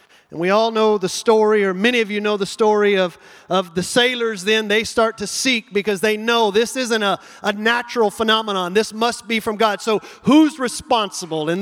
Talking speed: 205 wpm